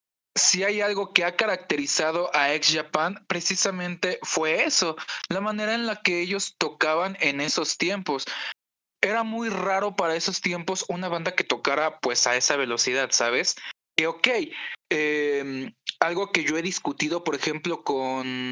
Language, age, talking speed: Spanish, 20-39, 155 wpm